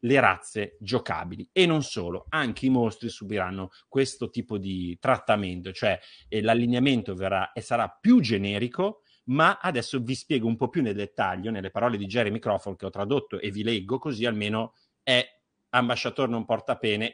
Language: Italian